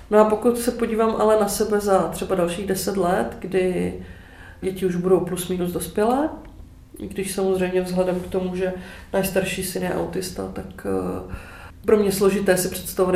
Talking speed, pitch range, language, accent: 170 wpm, 175-200 Hz, Czech, native